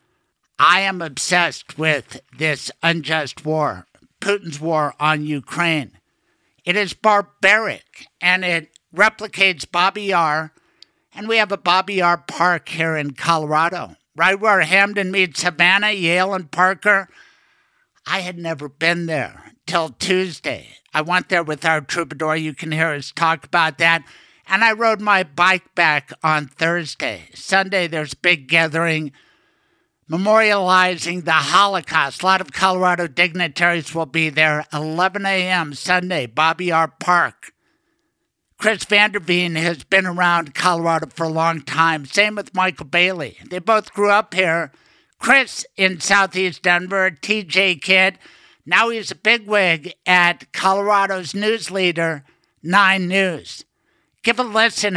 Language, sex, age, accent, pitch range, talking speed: English, male, 60-79, American, 160-195 Hz, 135 wpm